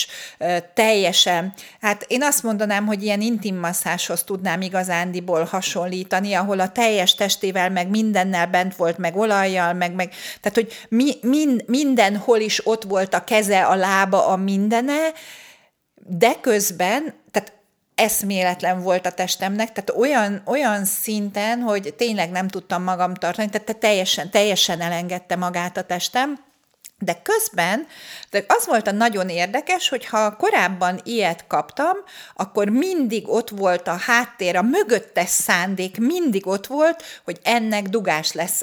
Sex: female